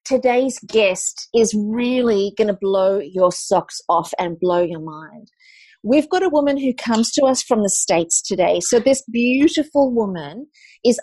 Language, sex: English, female